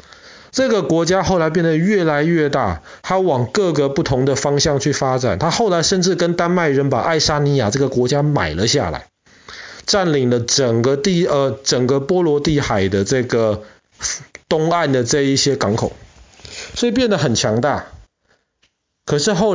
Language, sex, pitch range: Chinese, male, 115-165 Hz